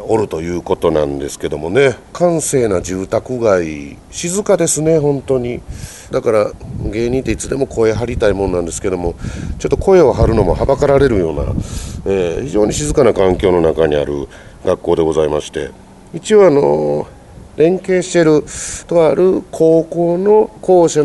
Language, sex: Japanese, male